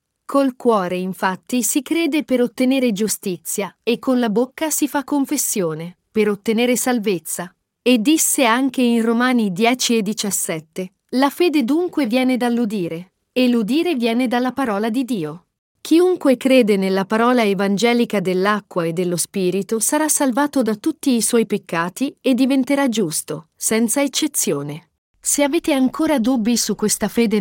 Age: 40-59